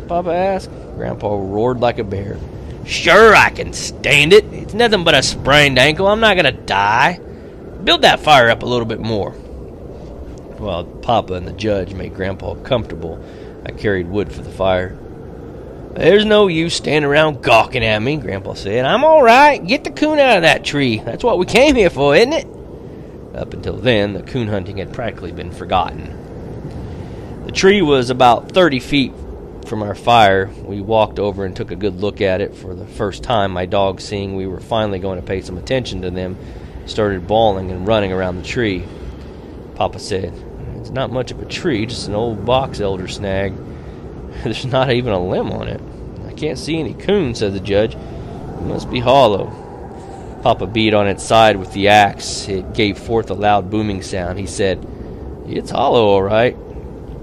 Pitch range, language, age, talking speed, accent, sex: 95-130 Hz, English, 30-49, 190 wpm, American, male